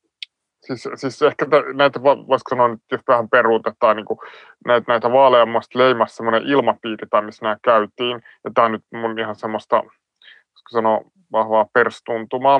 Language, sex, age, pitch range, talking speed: Finnish, male, 20-39, 110-120 Hz, 140 wpm